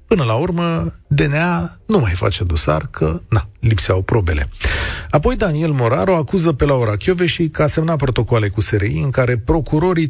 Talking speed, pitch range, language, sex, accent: 165 wpm, 105-160 Hz, Romanian, male, native